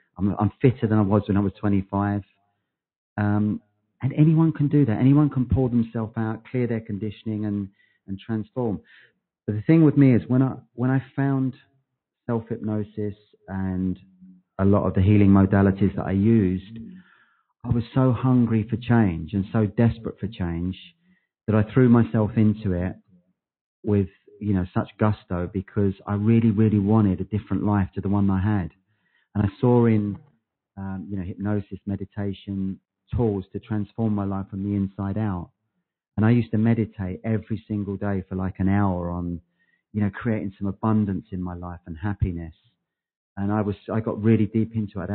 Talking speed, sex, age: 180 wpm, male, 40-59